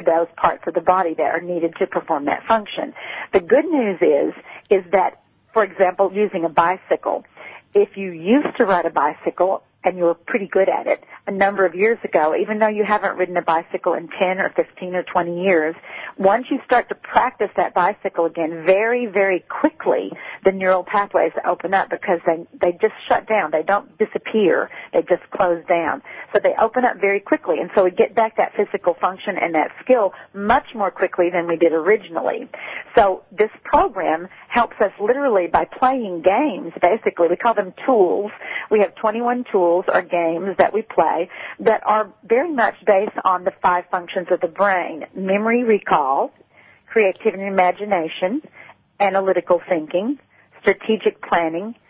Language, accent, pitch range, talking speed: English, American, 180-220 Hz, 175 wpm